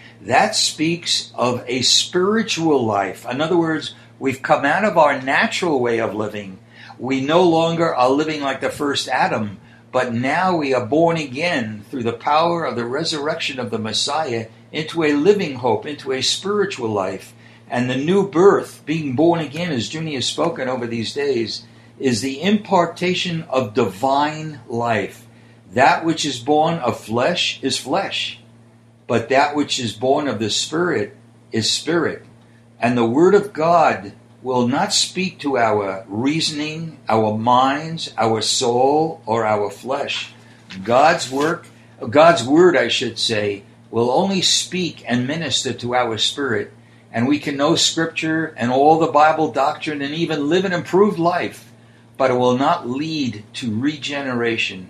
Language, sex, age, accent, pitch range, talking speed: English, male, 60-79, American, 115-155 Hz, 155 wpm